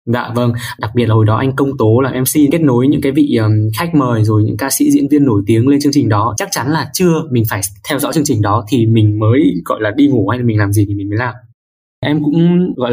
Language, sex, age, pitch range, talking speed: Vietnamese, male, 20-39, 110-145 Hz, 280 wpm